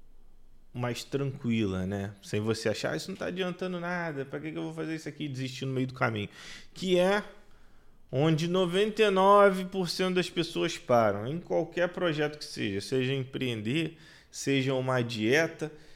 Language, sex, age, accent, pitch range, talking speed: Portuguese, male, 20-39, Brazilian, 115-150 Hz, 155 wpm